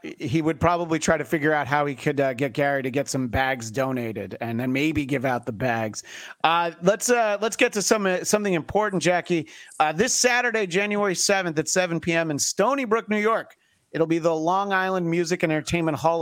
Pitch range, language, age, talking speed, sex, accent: 140-185 Hz, English, 40-59, 215 wpm, male, American